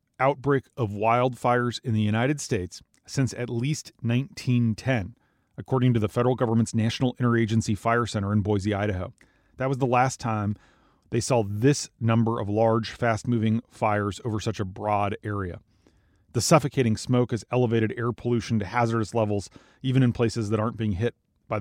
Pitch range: 105-130 Hz